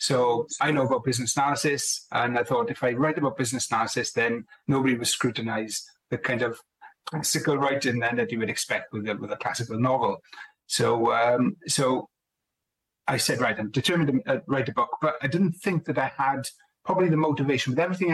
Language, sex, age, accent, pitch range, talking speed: English, male, 30-49, British, 120-150 Hz, 195 wpm